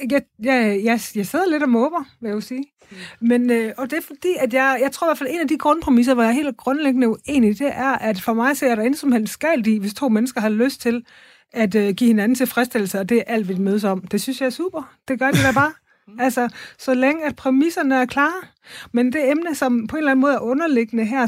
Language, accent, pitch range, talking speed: Danish, native, 215-270 Hz, 260 wpm